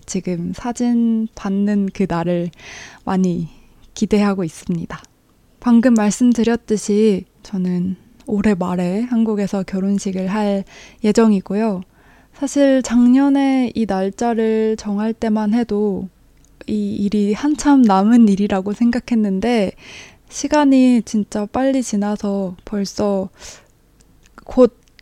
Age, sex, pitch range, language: 20-39, female, 195-230 Hz, Korean